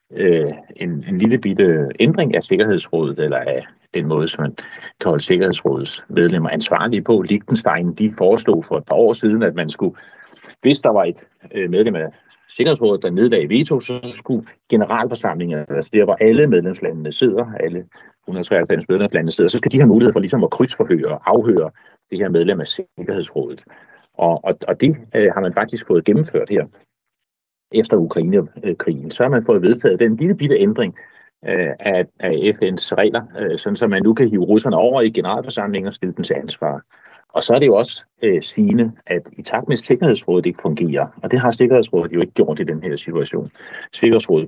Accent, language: native, Danish